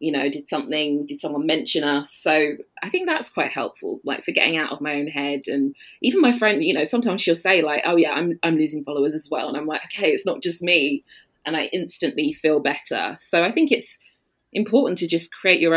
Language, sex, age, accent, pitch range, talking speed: English, female, 20-39, British, 150-195 Hz, 235 wpm